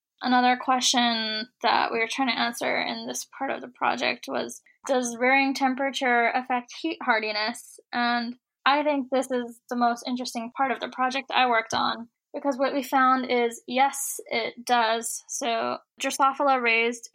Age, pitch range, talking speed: 10-29, 230-265 Hz, 165 wpm